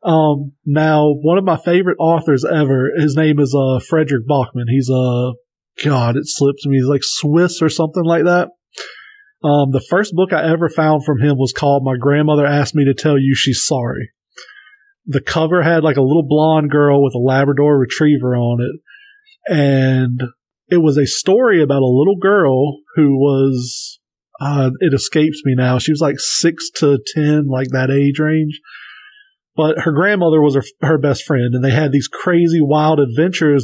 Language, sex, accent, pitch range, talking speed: English, male, American, 135-160 Hz, 185 wpm